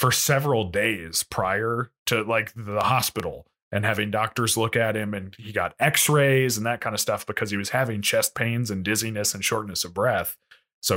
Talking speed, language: 195 wpm, English